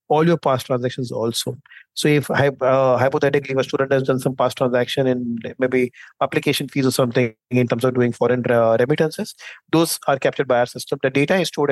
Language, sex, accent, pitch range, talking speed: English, male, Indian, 125-140 Hz, 205 wpm